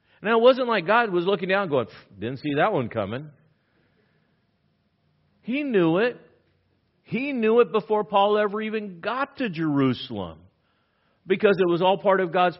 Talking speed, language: 165 wpm, English